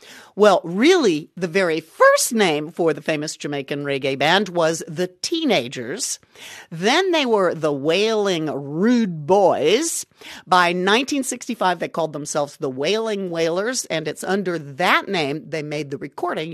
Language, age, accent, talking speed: English, 50-69, American, 140 wpm